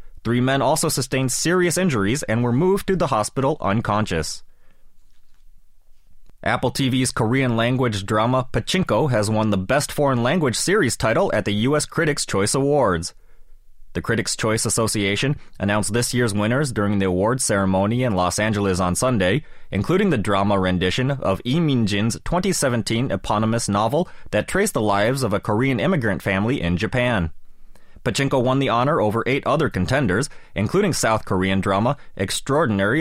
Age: 20-39